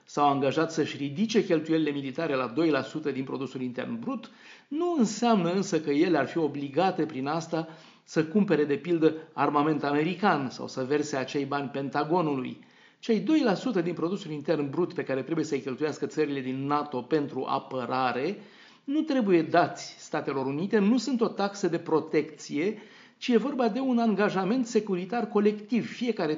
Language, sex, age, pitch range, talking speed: Romanian, male, 40-59, 140-195 Hz, 160 wpm